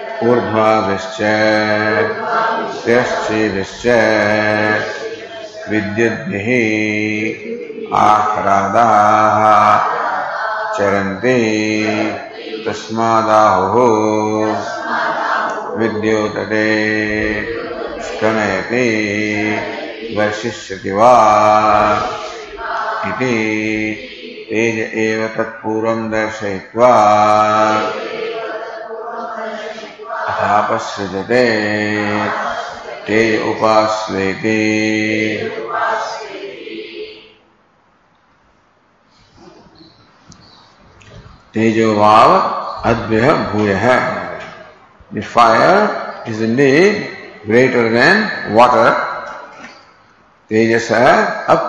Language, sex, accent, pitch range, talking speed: English, male, Indian, 105-115 Hz, 45 wpm